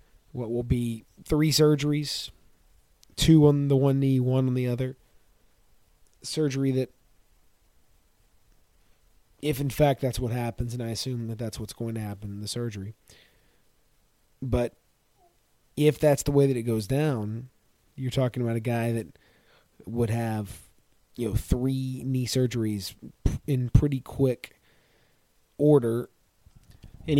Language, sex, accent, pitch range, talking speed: English, male, American, 110-135 Hz, 135 wpm